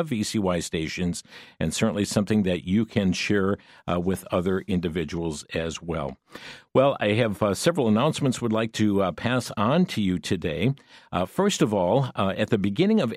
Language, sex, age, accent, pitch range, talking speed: English, male, 50-69, American, 95-125 Hz, 180 wpm